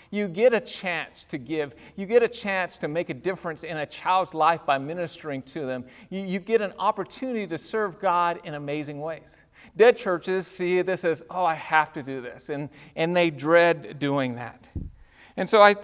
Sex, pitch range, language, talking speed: male, 175-220 Hz, English, 200 wpm